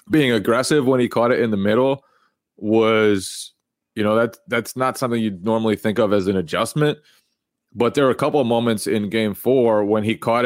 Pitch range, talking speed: 95-115 Hz, 205 wpm